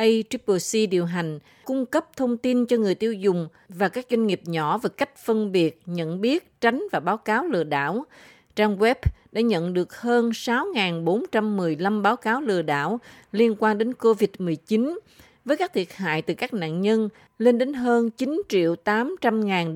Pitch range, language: 180-235 Hz, Vietnamese